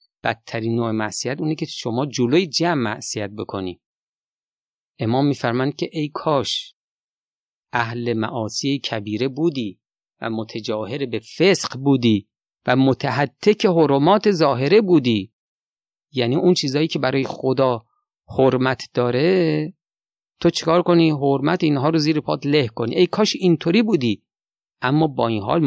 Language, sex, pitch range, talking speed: Persian, male, 115-165 Hz, 130 wpm